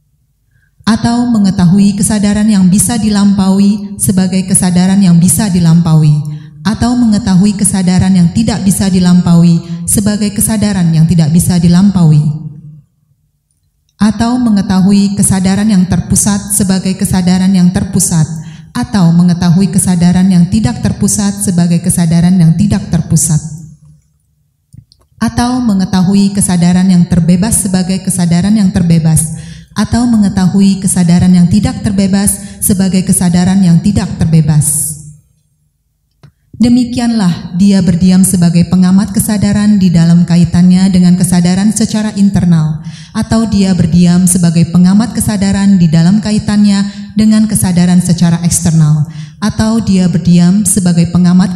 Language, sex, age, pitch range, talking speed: Indonesian, female, 30-49, 170-200 Hz, 110 wpm